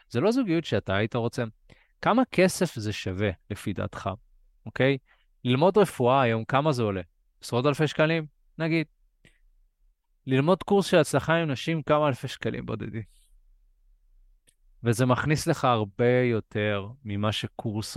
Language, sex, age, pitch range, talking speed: Hebrew, male, 20-39, 110-150 Hz, 135 wpm